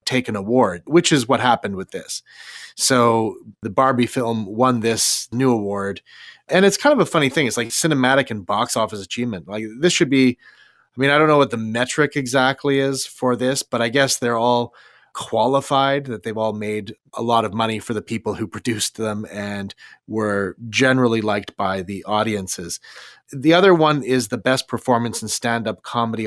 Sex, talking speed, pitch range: male, 190 wpm, 110-135 Hz